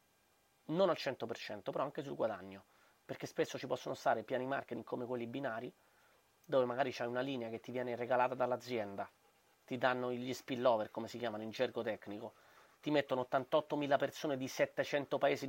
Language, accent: Italian, native